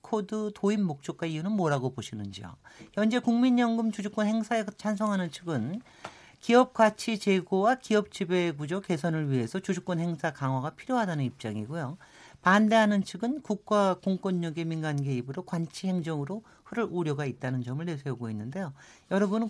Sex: male